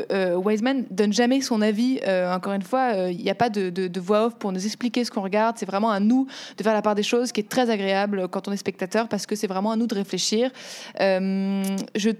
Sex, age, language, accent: female, 20-39, French, French